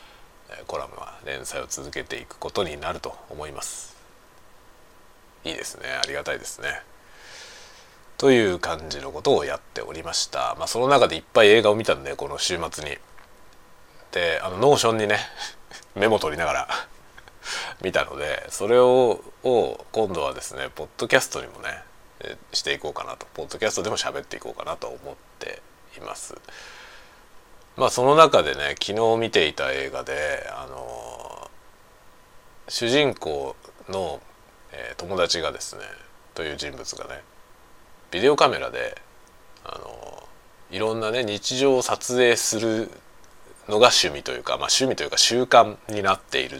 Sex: male